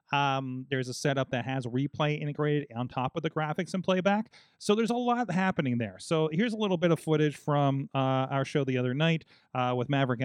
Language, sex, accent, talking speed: English, male, American, 225 wpm